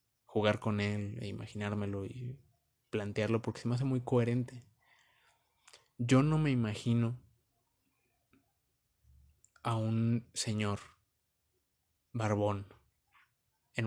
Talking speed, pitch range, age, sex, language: 95 wpm, 105-130 Hz, 20-39, male, Spanish